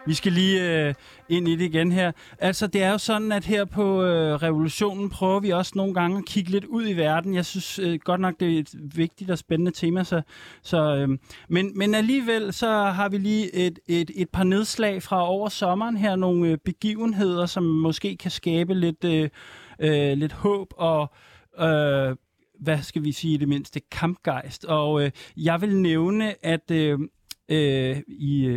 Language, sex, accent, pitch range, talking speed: Danish, male, native, 150-190 Hz, 185 wpm